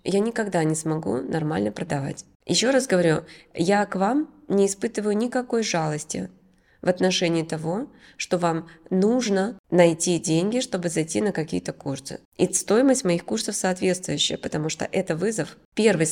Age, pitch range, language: 20-39, 160-195 Hz, Russian